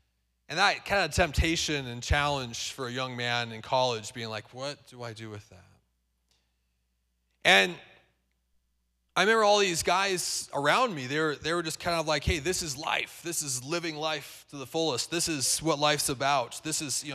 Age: 30-49